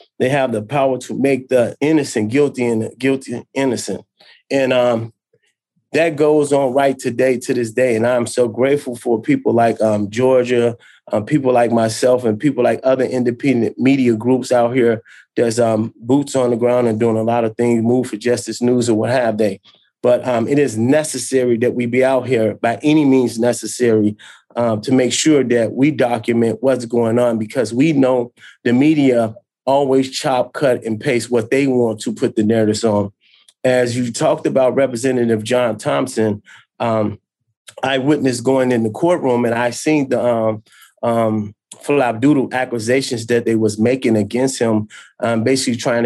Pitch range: 115-130 Hz